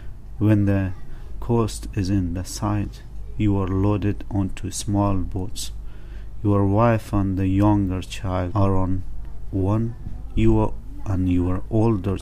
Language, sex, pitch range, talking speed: English, male, 95-110 Hz, 130 wpm